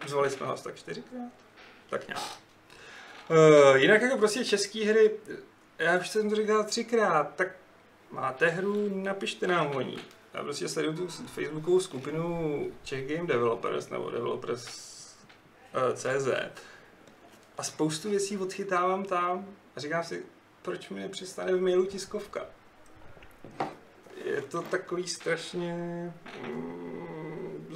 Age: 30-49